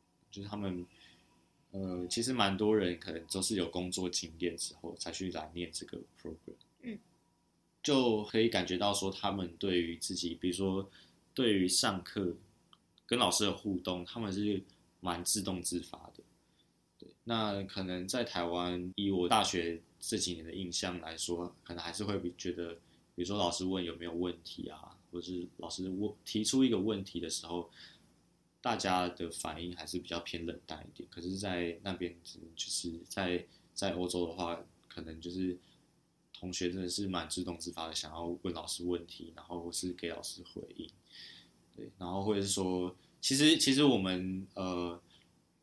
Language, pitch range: Chinese, 85-100 Hz